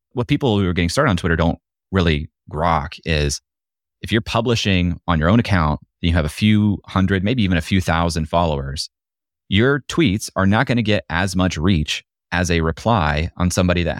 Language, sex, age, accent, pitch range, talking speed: English, male, 30-49, American, 80-100 Hz, 195 wpm